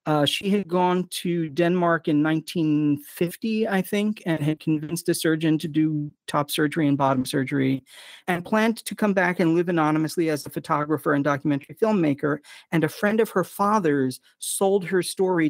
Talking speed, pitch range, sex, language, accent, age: 175 wpm, 150-185 Hz, male, English, American, 40-59